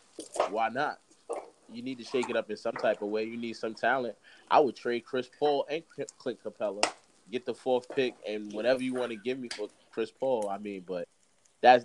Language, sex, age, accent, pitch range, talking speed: English, male, 20-39, American, 110-130 Hz, 220 wpm